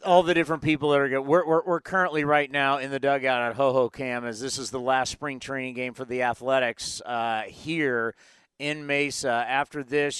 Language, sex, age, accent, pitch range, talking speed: English, male, 40-59, American, 135-170 Hz, 210 wpm